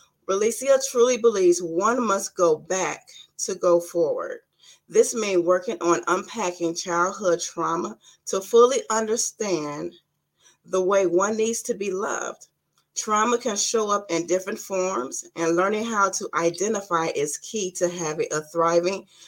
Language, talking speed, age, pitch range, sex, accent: English, 140 wpm, 30-49, 170-220 Hz, female, American